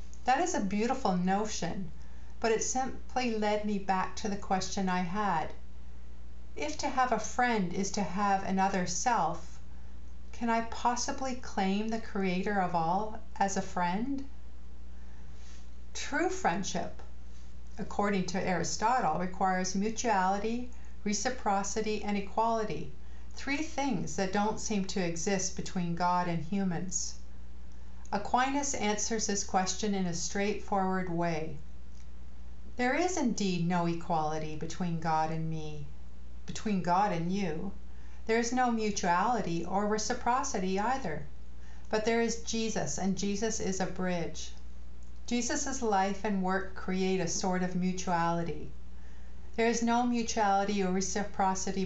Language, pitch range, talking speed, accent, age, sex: English, 160-215 Hz, 125 wpm, American, 50-69, female